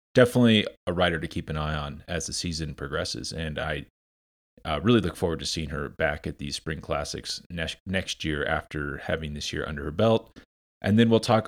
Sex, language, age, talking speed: male, English, 30-49, 210 wpm